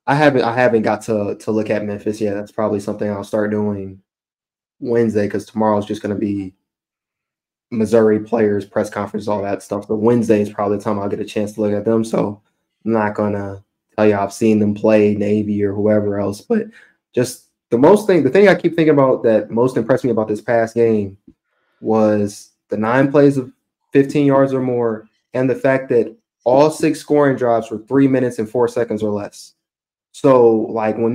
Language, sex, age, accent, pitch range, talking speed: English, male, 20-39, American, 105-125 Hz, 210 wpm